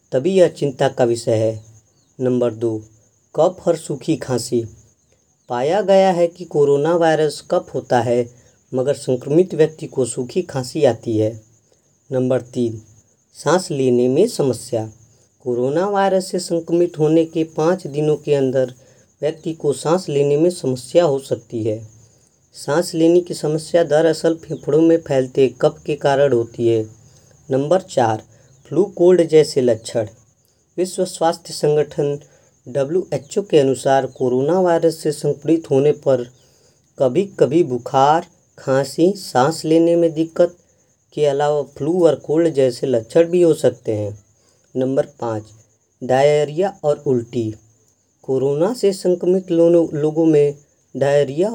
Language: Hindi